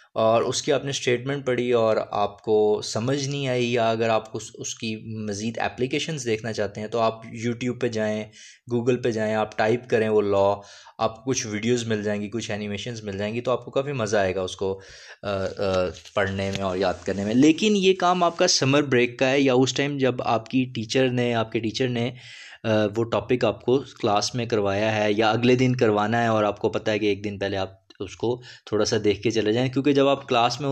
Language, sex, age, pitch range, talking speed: Urdu, male, 20-39, 110-140 Hz, 240 wpm